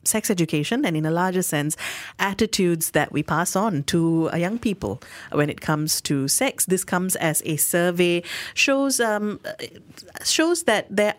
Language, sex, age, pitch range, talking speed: English, female, 30-49, 150-195 Hz, 160 wpm